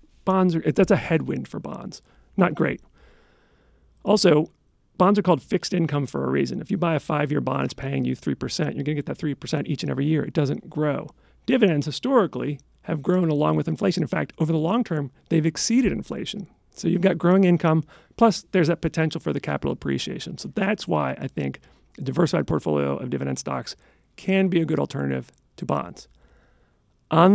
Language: English